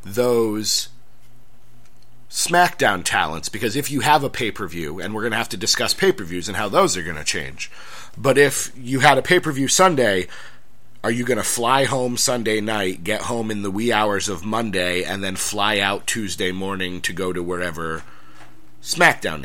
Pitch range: 95-125 Hz